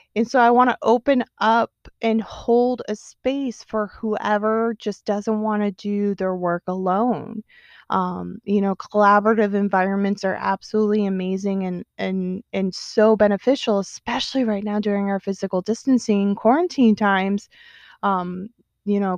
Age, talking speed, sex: 20-39, 145 wpm, female